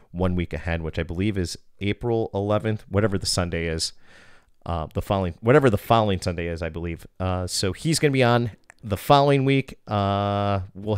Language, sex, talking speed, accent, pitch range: English, male, 190 wpm, American, 90-115 Hz